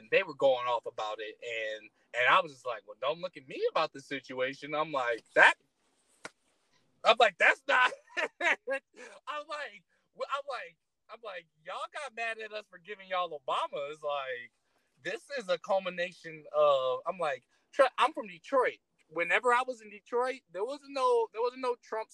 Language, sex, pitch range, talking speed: English, male, 155-245 Hz, 180 wpm